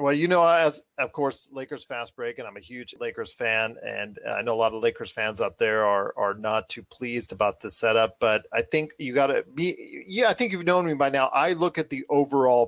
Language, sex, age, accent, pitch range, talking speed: English, male, 40-59, American, 135-165 Hz, 250 wpm